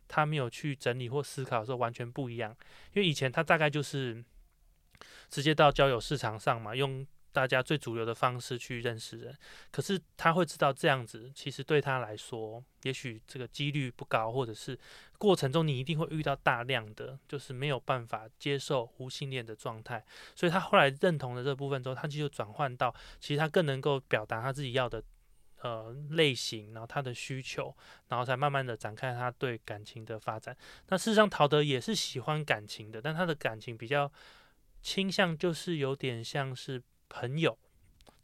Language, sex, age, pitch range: Chinese, male, 20-39, 120-155 Hz